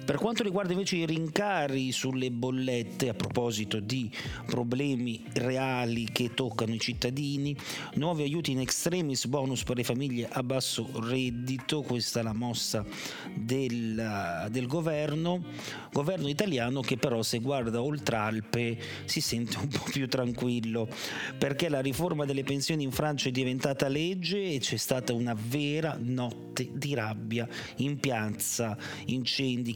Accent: native